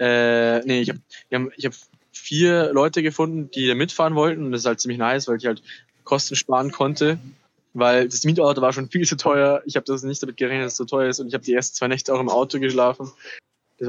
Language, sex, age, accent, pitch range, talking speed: German, male, 20-39, German, 125-145 Hz, 240 wpm